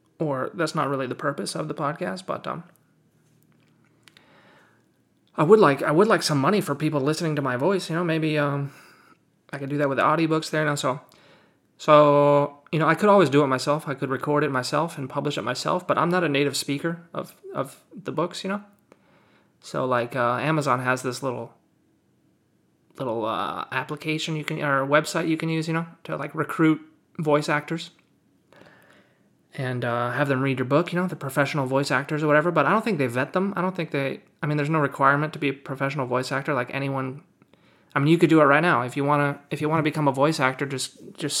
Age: 30-49